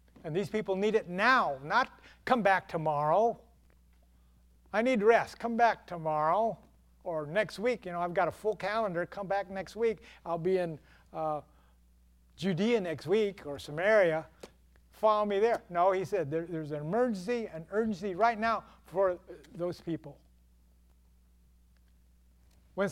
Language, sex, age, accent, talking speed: English, male, 60-79, American, 145 wpm